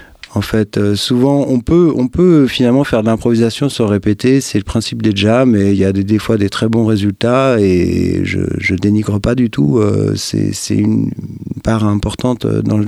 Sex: male